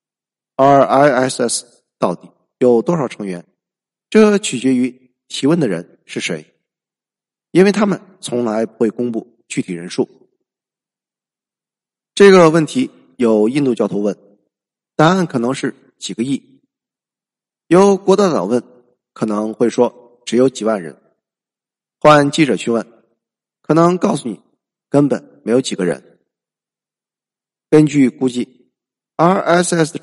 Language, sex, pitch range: Chinese, male, 115-185 Hz